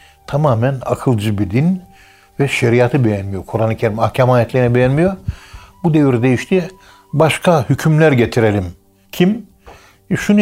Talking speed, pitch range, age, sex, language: 115 wpm, 110-140 Hz, 60-79, male, Turkish